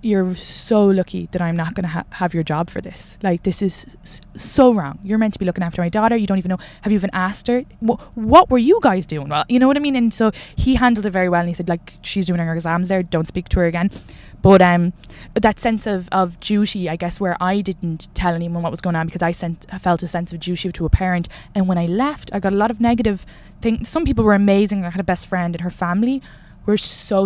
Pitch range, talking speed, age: 175-205 Hz, 275 wpm, 10-29